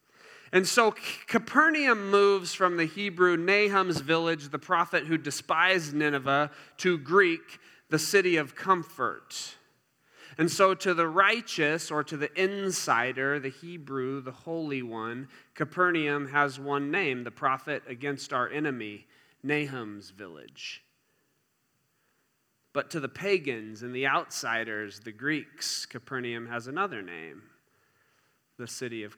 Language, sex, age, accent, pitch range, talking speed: English, male, 30-49, American, 140-195 Hz, 125 wpm